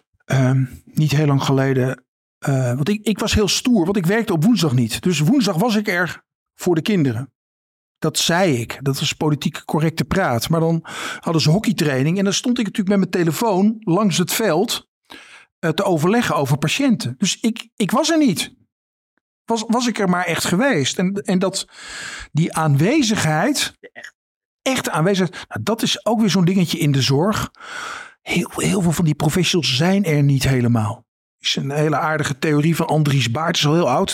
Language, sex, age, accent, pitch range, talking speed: Dutch, male, 50-69, Dutch, 155-210 Hz, 190 wpm